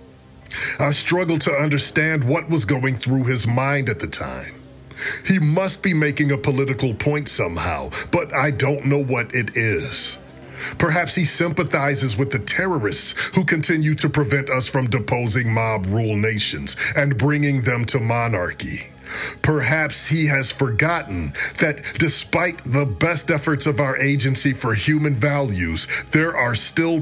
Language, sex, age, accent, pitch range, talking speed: English, male, 40-59, American, 125-160 Hz, 150 wpm